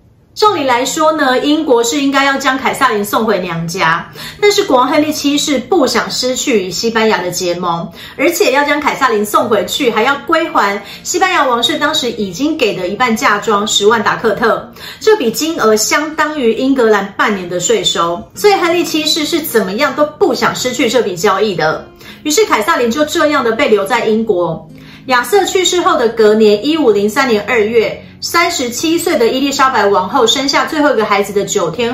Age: 40-59